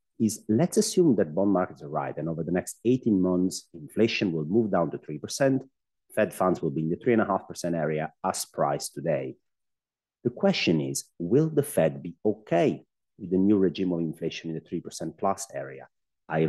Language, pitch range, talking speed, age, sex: English, 80-100 Hz, 185 wpm, 30-49, male